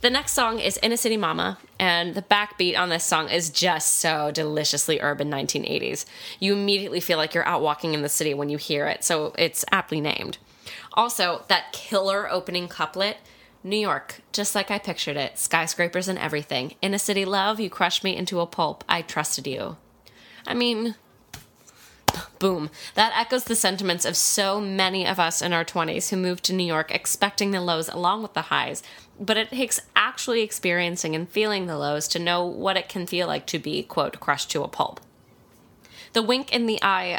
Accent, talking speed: American, 195 wpm